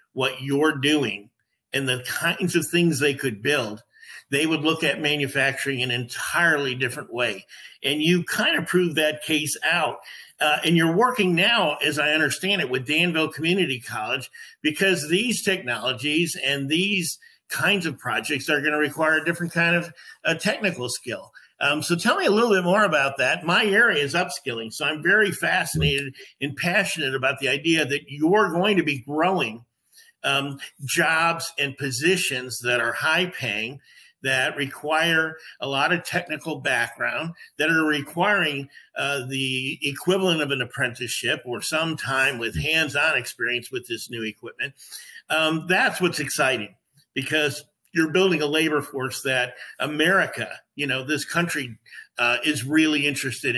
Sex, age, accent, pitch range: male, 50-69, American, 135-170 Hz